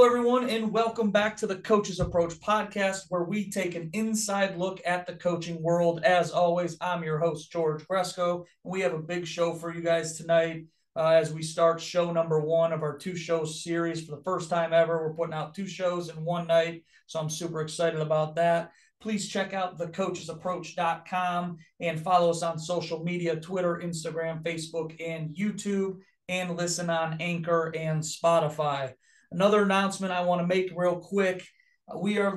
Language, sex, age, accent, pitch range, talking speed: English, male, 40-59, American, 165-185 Hz, 180 wpm